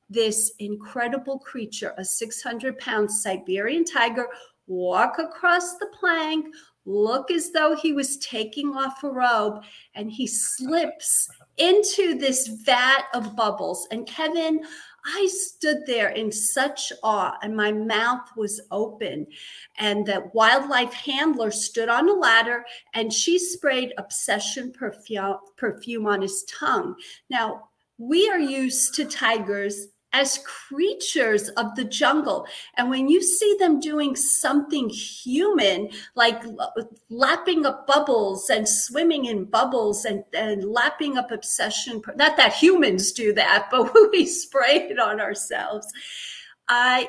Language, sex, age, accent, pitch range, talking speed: English, female, 50-69, American, 215-300 Hz, 135 wpm